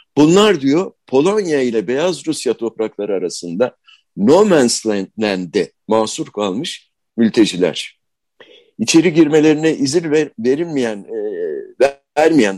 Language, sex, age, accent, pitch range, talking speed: Turkish, male, 60-79, native, 115-160 Hz, 95 wpm